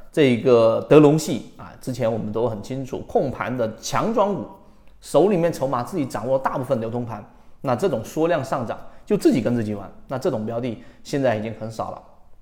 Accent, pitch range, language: native, 115-170 Hz, Chinese